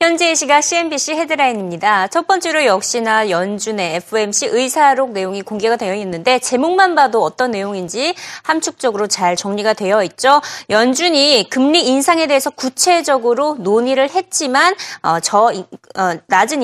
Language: Korean